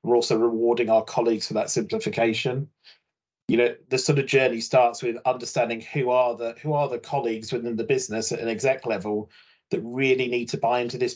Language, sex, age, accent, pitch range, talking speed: English, male, 30-49, British, 115-135 Hz, 205 wpm